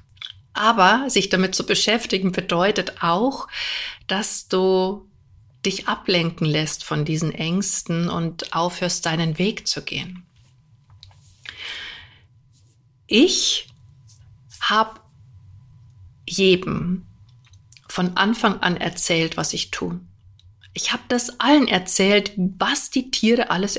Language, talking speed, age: German, 100 wpm, 50-69